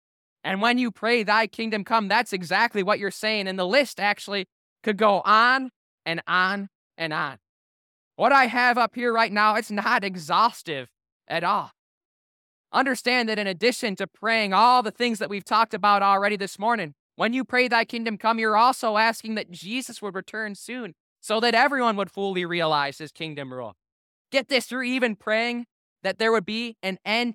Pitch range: 160-220 Hz